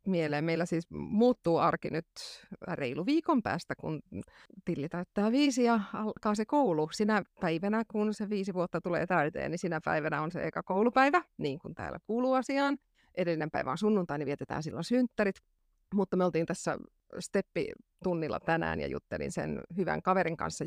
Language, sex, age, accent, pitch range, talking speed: Finnish, female, 30-49, native, 175-245 Hz, 165 wpm